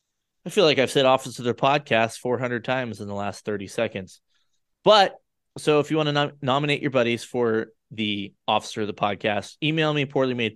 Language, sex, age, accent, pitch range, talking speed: English, male, 20-39, American, 110-145 Hz, 205 wpm